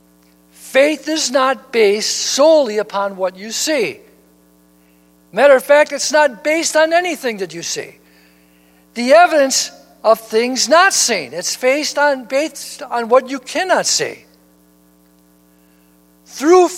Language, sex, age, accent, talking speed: English, male, 60-79, American, 125 wpm